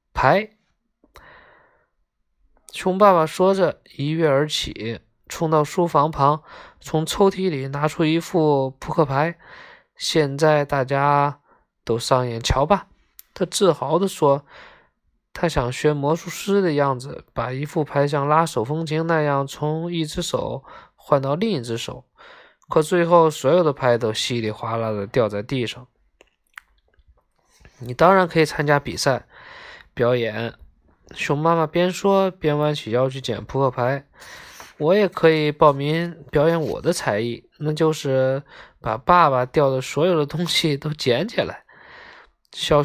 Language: Chinese